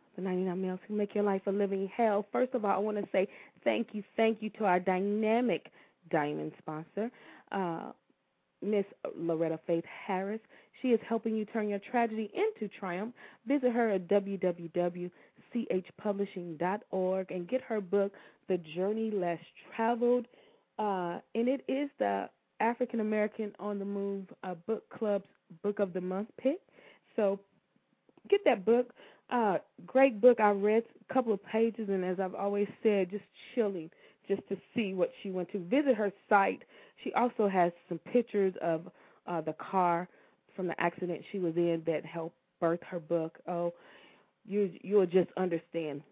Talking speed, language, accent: 165 wpm, English, American